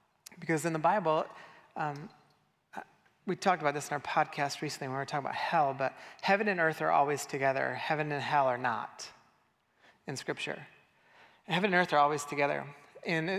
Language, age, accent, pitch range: English, 30-49, American, 145-170 Hz